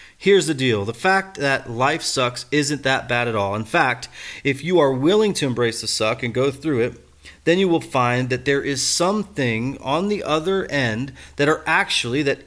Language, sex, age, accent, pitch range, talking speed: English, male, 30-49, American, 115-145 Hz, 205 wpm